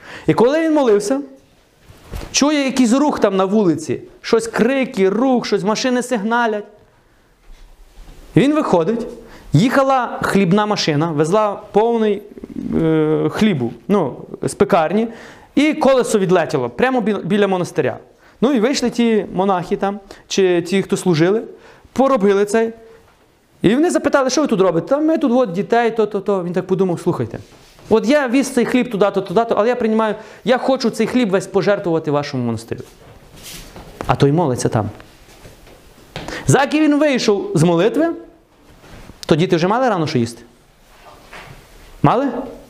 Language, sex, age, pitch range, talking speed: Ukrainian, male, 30-49, 175-240 Hz, 140 wpm